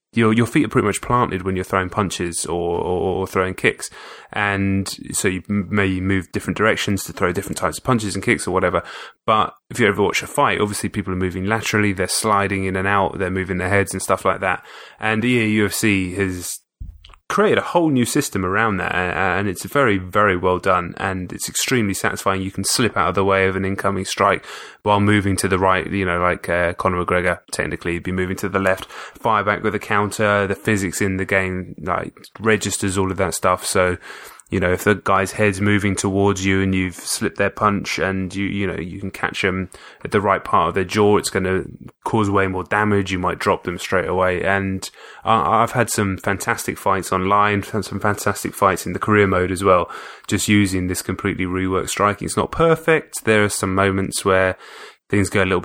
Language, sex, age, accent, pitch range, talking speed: English, male, 20-39, British, 95-105 Hz, 220 wpm